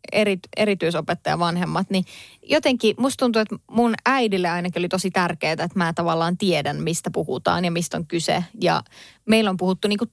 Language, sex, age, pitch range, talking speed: Finnish, female, 20-39, 175-215 Hz, 165 wpm